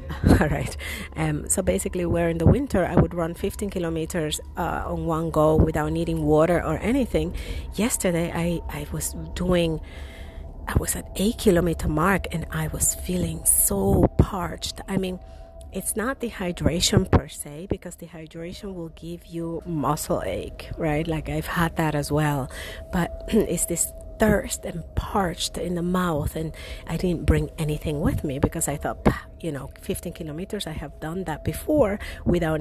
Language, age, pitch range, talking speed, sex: English, 30-49, 150-175 Hz, 165 wpm, female